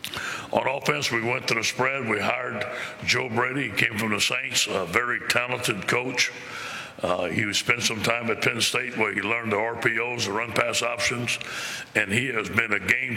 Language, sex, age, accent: English, male, 60-79, American